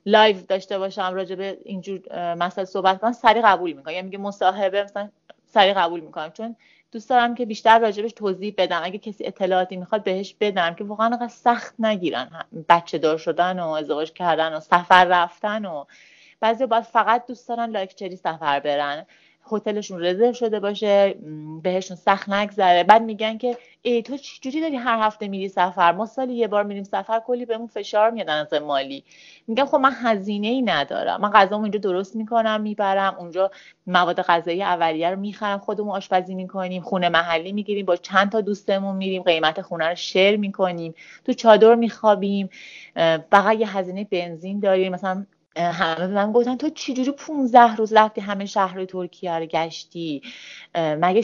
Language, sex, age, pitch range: Persian, female, 30-49, 180-220 Hz